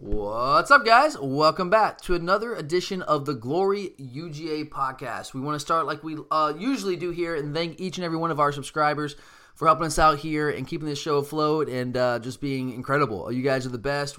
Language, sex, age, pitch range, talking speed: English, male, 20-39, 130-170 Hz, 220 wpm